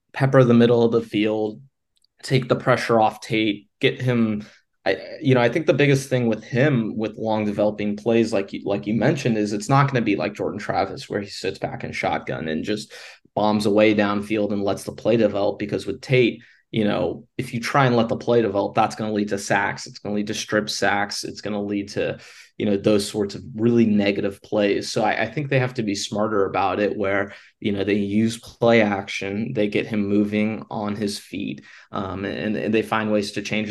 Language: English